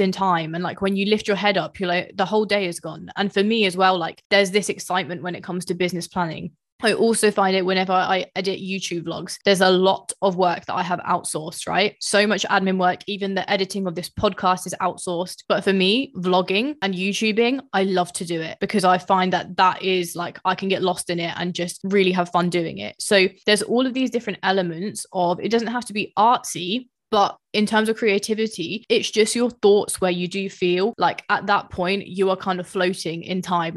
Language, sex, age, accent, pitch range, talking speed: English, female, 20-39, British, 180-200 Hz, 235 wpm